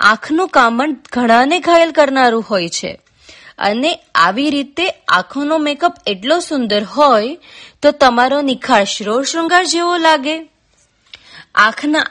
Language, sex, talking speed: Gujarati, female, 115 wpm